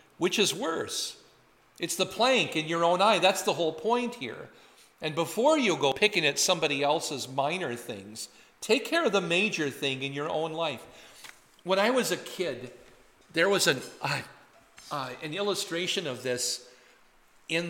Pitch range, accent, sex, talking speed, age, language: 135-185 Hz, American, male, 170 wpm, 50-69, English